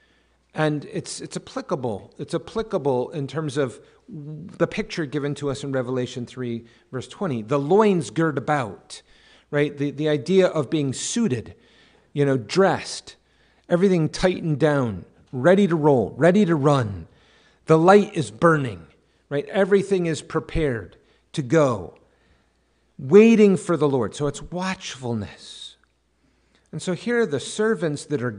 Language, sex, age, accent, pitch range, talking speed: English, male, 50-69, American, 110-155 Hz, 140 wpm